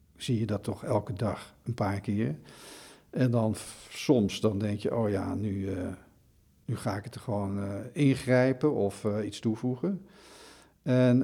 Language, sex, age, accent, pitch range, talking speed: Dutch, male, 50-69, Dutch, 105-125 Hz, 175 wpm